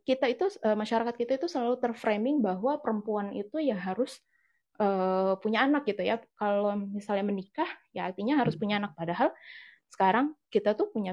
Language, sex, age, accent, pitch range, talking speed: Indonesian, female, 20-39, native, 185-230 Hz, 155 wpm